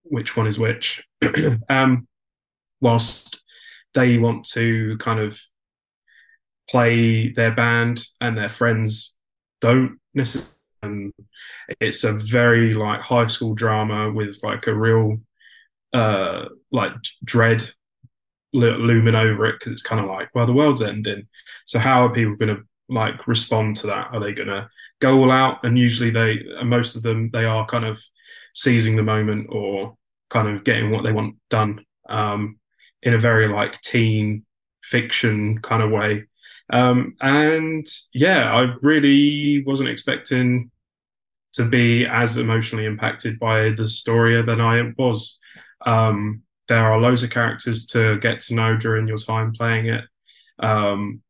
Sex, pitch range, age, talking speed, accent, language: male, 110-120 Hz, 20-39, 150 wpm, British, English